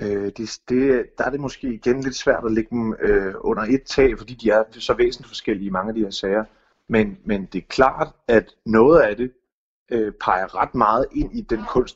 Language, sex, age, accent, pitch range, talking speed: Danish, male, 30-49, native, 105-135 Hz, 225 wpm